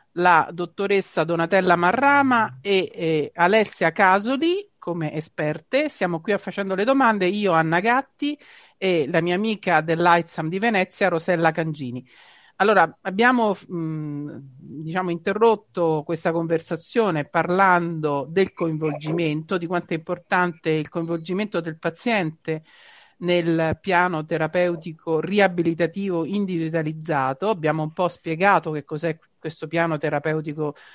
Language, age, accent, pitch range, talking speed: Italian, 50-69, native, 150-185 Hz, 115 wpm